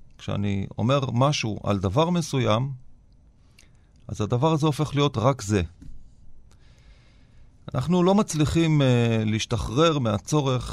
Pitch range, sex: 110-145 Hz, male